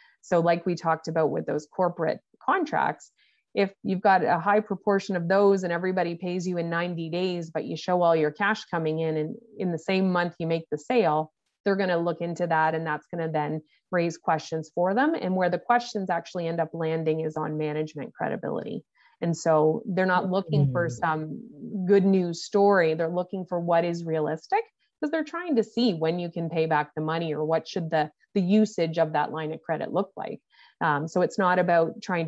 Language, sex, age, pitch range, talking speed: English, female, 30-49, 160-195 Hz, 215 wpm